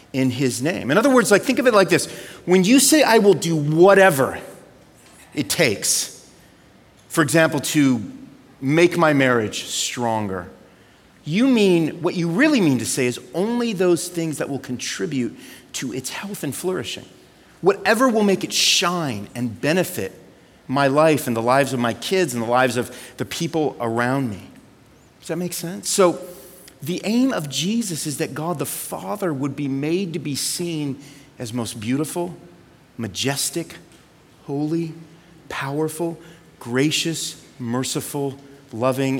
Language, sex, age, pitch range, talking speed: English, male, 40-59, 125-170 Hz, 155 wpm